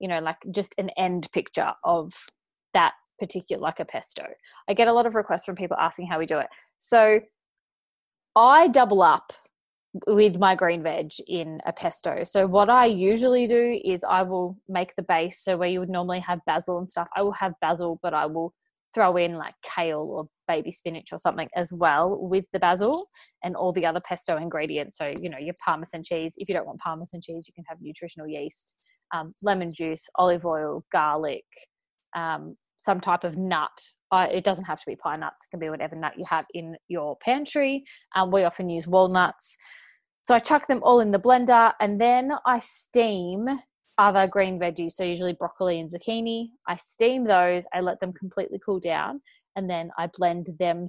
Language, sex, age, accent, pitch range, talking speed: English, female, 20-39, Australian, 170-210 Hz, 200 wpm